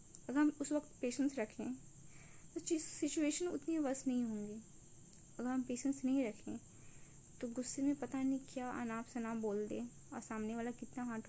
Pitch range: 220-265 Hz